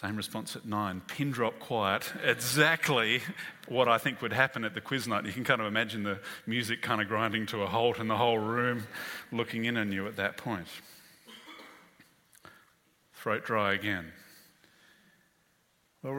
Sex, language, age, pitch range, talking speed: male, English, 40-59, 105-135 Hz, 165 wpm